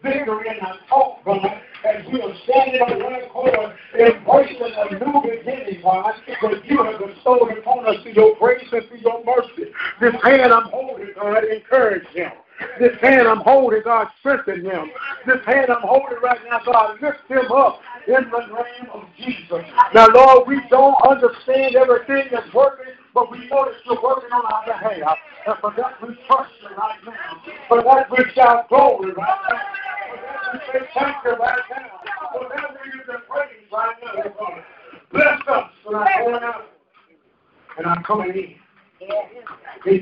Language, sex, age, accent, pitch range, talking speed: English, male, 60-79, American, 215-265 Hz, 140 wpm